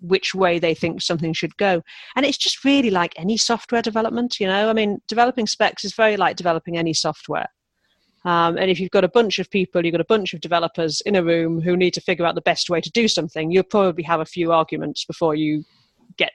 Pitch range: 170-205 Hz